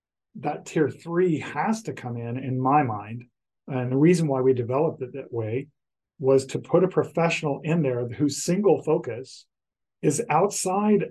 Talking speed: 165 wpm